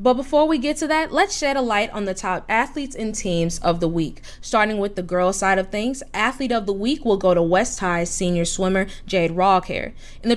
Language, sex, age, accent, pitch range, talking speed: English, female, 20-39, American, 175-235 Hz, 235 wpm